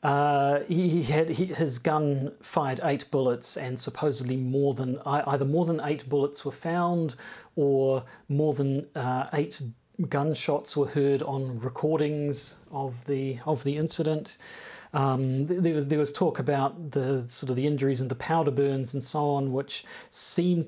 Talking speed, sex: 165 wpm, male